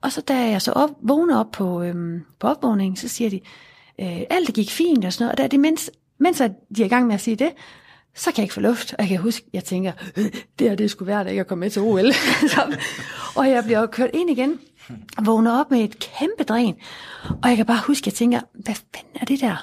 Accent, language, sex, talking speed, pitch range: native, Danish, female, 270 wpm, 205-265 Hz